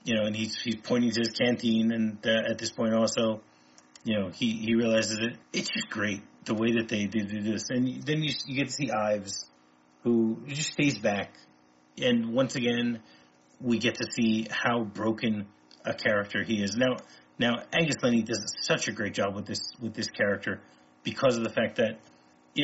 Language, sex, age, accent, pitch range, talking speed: English, male, 30-49, American, 105-125 Hz, 200 wpm